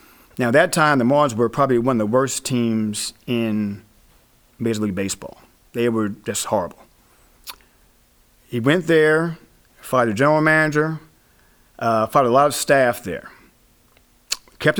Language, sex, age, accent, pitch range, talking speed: English, male, 40-59, American, 115-145 Hz, 150 wpm